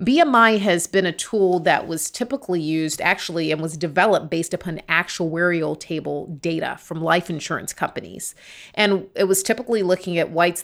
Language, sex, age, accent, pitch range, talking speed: English, female, 30-49, American, 165-195 Hz, 165 wpm